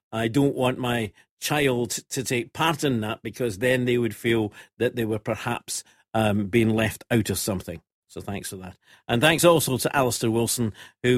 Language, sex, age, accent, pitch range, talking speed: English, male, 50-69, British, 100-125 Hz, 195 wpm